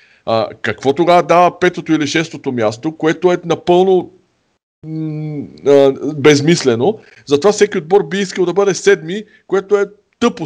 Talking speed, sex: 145 wpm, male